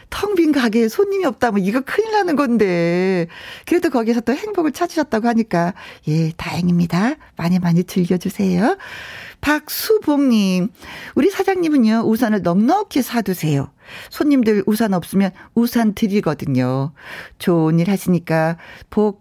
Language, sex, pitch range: Korean, female, 185-280 Hz